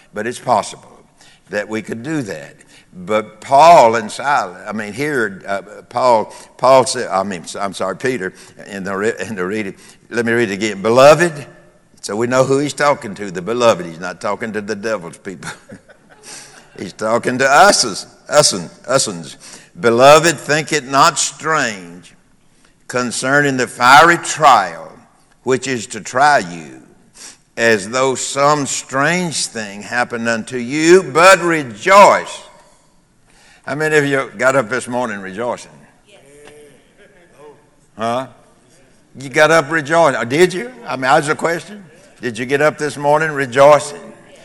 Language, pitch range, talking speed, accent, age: English, 115-150 Hz, 155 wpm, American, 60-79